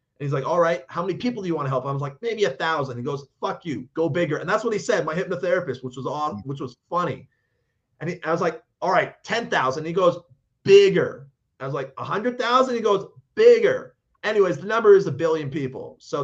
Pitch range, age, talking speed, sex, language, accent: 130-165 Hz, 30-49, 235 wpm, male, English, American